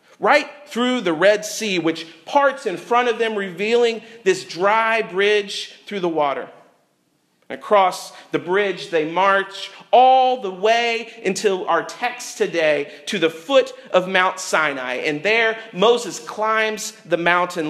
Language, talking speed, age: English, 140 wpm, 40-59